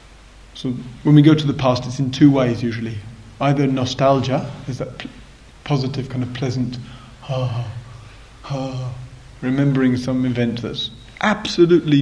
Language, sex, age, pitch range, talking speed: English, male, 30-49, 120-150 Hz, 140 wpm